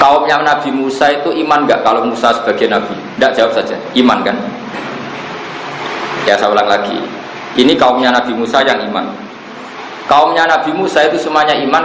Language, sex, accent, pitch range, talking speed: Indonesian, male, native, 120-150 Hz, 155 wpm